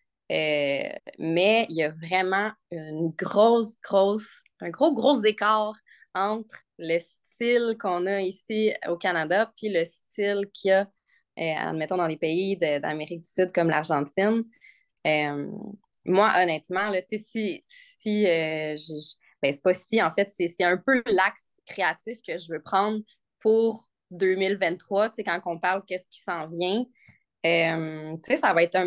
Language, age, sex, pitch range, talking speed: French, 20-39, female, 165-215 Hz, 160 wpm